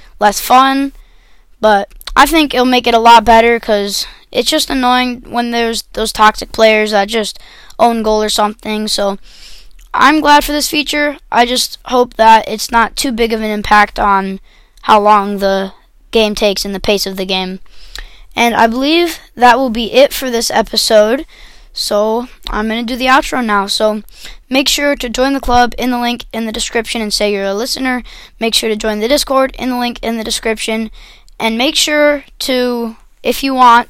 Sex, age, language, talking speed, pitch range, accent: female, 20-39, English, 195 wpm, 215-255 Hz, American